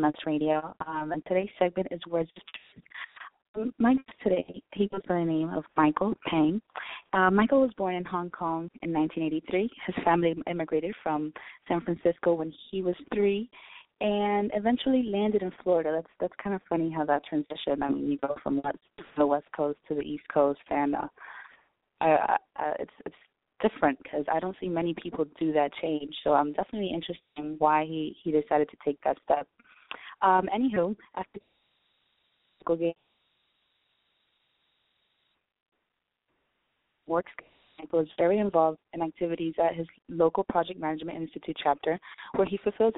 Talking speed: 160 wpm